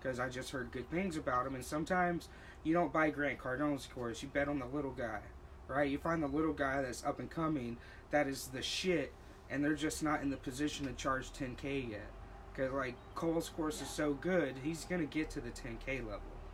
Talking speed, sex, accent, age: 220 wpm, male, American, 20-39